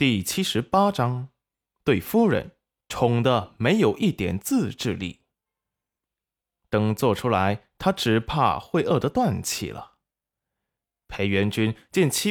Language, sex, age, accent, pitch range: Chinese, male, 20-39, native, 105-155 Hz